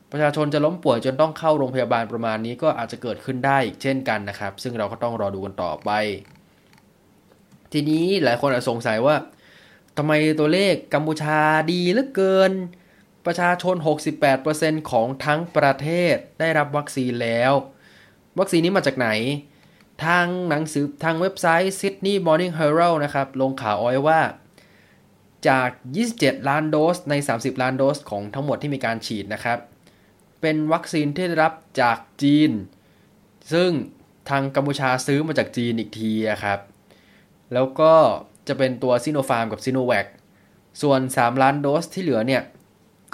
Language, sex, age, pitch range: Thai, male, 20-39, 120-155 Hz